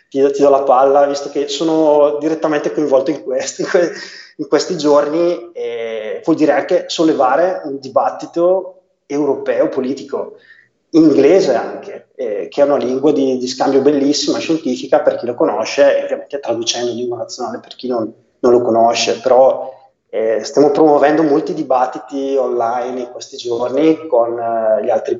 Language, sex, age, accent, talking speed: Italian, male, 30-49, native, 160 wpm